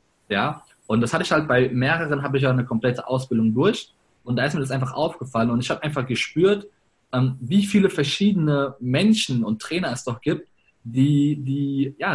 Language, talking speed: German, 195 wpm